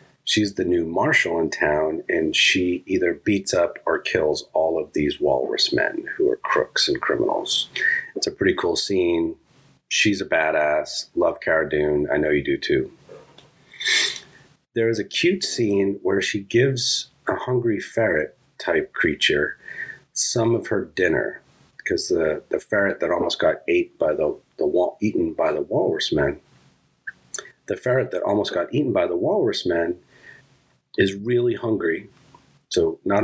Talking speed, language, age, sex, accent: 155 wpm, English, 40-59, male, American